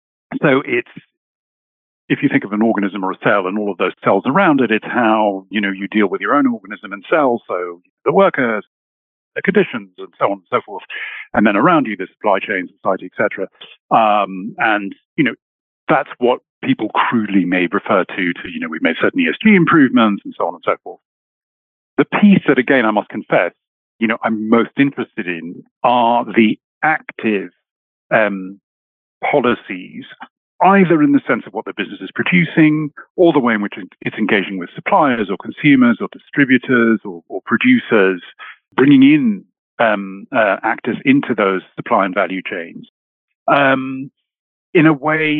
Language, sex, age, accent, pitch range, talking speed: English, male, 50-69, British, 100-155 Hz, 180 wpm